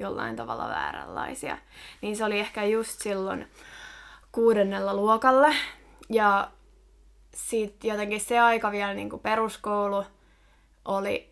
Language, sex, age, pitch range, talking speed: Finnish, female, 20-39, 200-230 Hz, 105 wpm